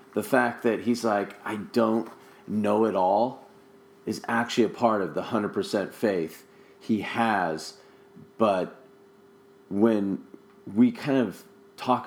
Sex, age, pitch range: male, 40-59, 110-130 Hz